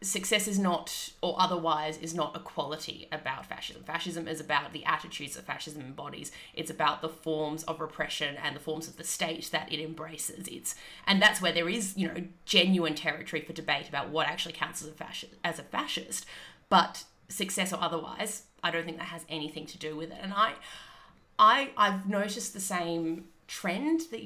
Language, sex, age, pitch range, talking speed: English, female, 20-39, 160-195 Hz, 195 wpm